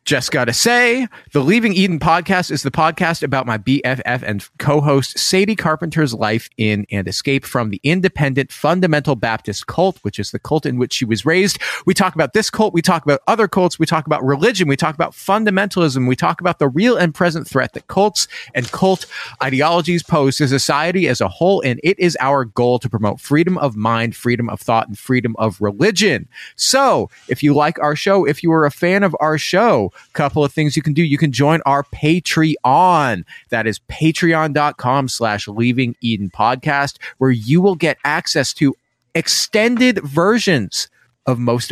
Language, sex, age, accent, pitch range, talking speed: English, male, 30-49, American, 125-165 Hz, 190 wpm